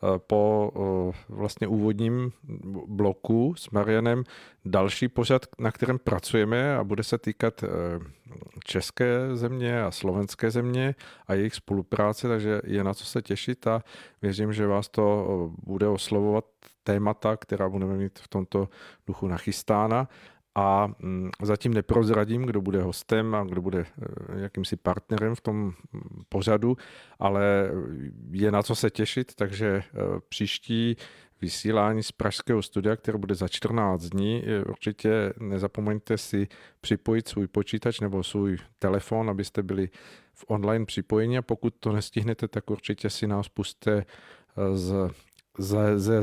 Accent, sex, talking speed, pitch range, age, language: native, male, 130 wpm, 100-115 Hz, 50-69, Czech